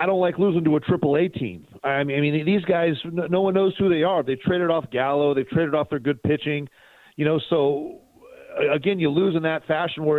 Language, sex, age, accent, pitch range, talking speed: English, male, 40-59, American, 135-165 Hz, 235 wpm